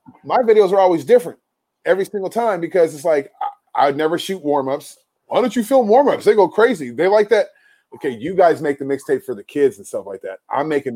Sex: male